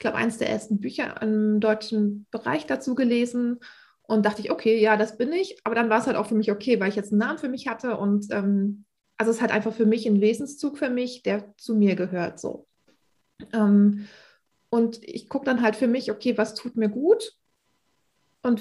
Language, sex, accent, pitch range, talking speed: German, female, German, 205-240 Hz, 215 wpm